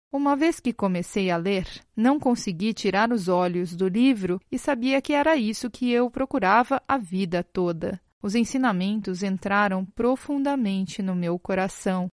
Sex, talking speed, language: female, 155 wpm, Portuguese